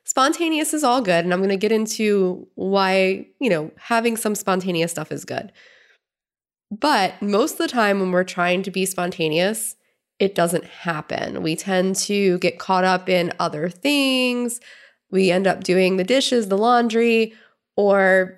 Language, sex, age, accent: English, female, 20-39, American